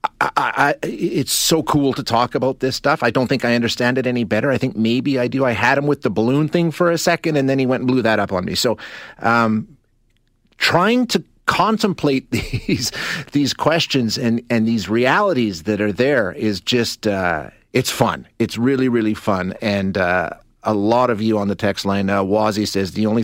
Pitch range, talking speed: 105-130 Hz, 215 wpm